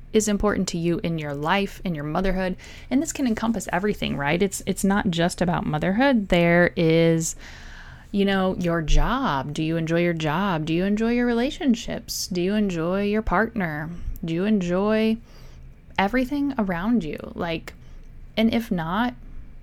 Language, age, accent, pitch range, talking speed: English, 30-49, American, 165-220 Hz, 160 wpm